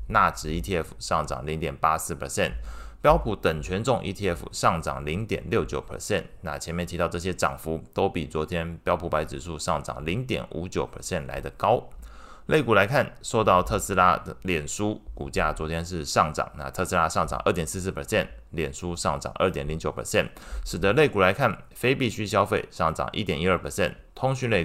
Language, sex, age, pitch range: Chinese, male, 20-39, 75-95 Hz